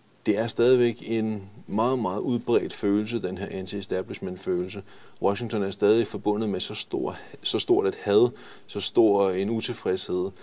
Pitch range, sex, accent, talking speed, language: 100-120 Hz, male, native, 145 wpm, Danish